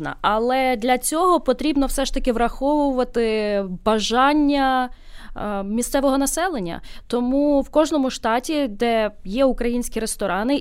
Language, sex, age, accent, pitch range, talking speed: Ukrainian, female, 20-39, native, 215-275 Hz, 110 wpm